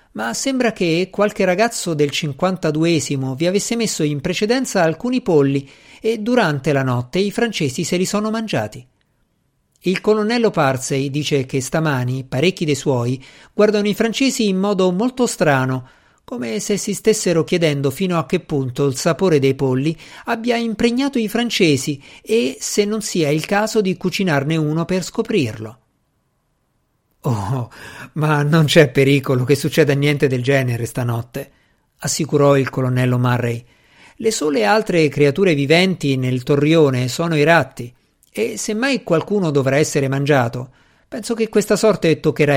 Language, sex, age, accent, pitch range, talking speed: Italian, male, 50-69, native, 135-205 Hz, 150 wpm